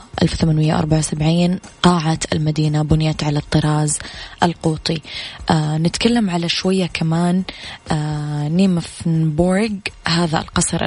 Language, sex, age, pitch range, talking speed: English, female, 20-39, 155-175 Hz, 75 wpm